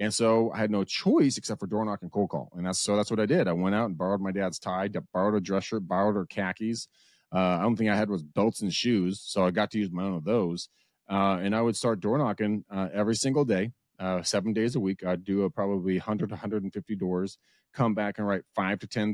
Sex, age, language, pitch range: male, 30-49, English, 95-115 Hz